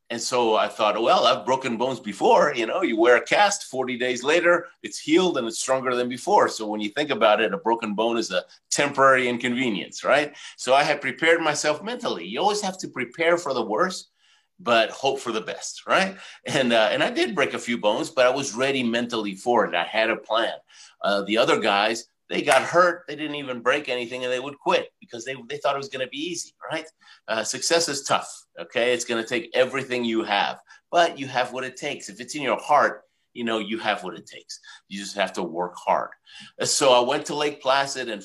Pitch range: 110-155 Hz